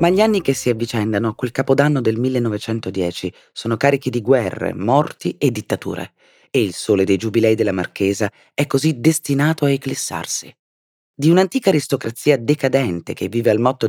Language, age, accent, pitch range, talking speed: Italian, 30-49, native, 105-150 Hz, 165 wpm